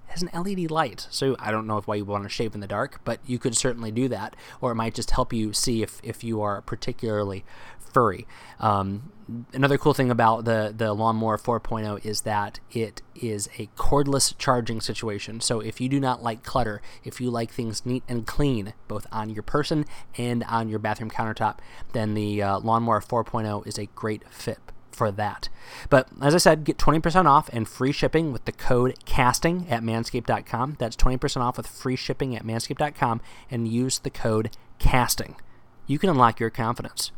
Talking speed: 195 wpm